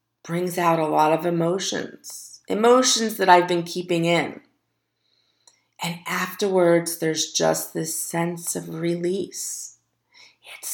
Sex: female